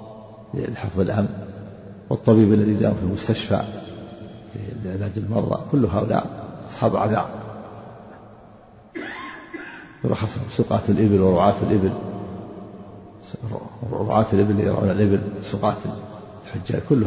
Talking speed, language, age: 100 wpm, Arabic, 50-69